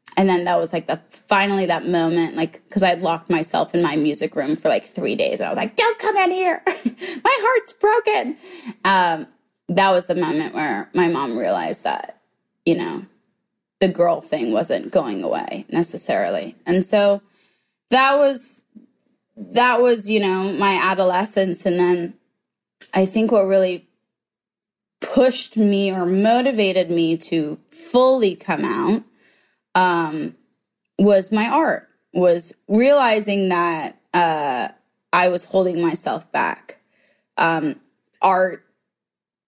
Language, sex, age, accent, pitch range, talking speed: English, female, 20-39, American, 170-220 Hz, 140 wpm